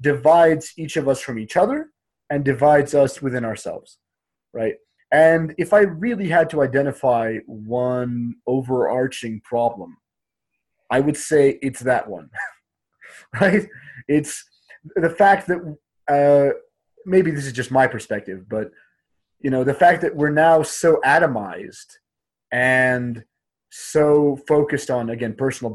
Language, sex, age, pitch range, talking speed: English, male, 30-49, 120-155 Hz, 135 wpm